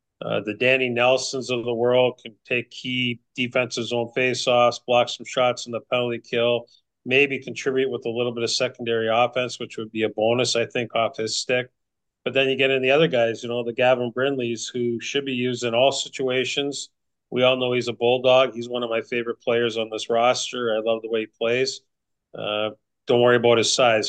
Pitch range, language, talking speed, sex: 115-135 Hz, English, 215 wpm, male